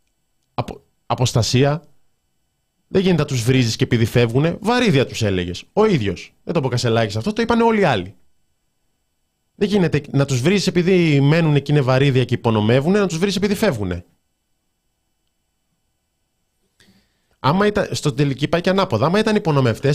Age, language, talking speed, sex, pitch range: 20-39, Greek, 145 wpm, male, 105-170 Hz